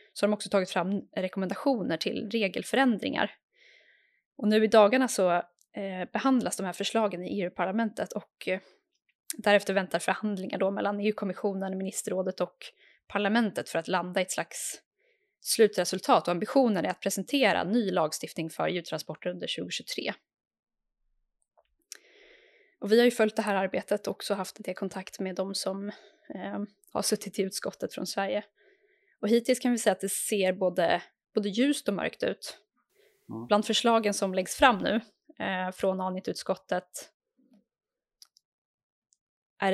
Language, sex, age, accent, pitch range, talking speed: Swedish, female, 10-29, native, 185-230 Hz, 150 wpm